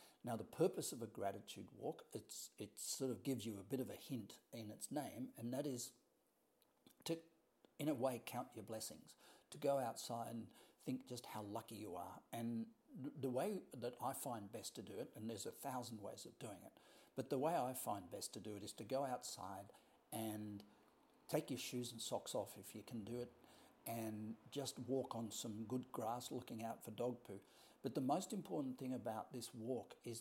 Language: English